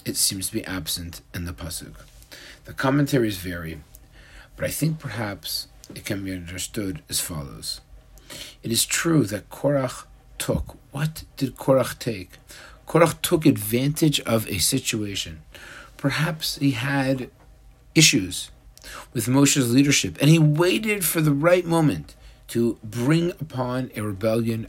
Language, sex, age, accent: English, male, 50-69, American